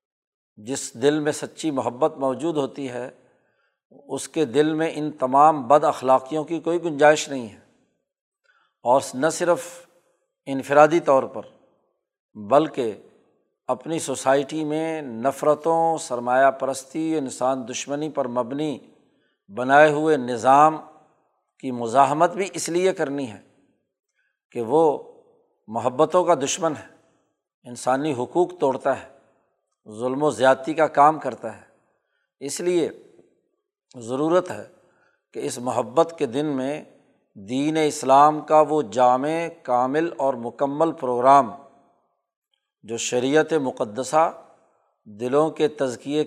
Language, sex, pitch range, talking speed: Urdu, male, 130-160 Hz, 115 wpm